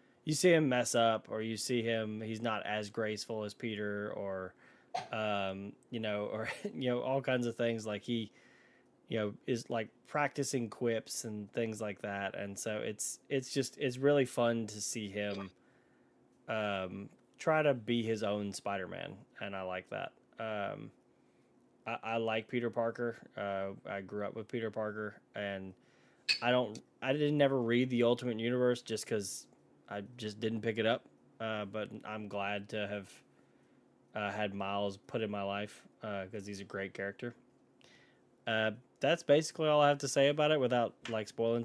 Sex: male